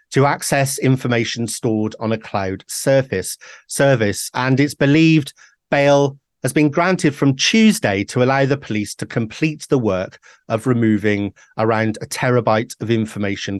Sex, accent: male, British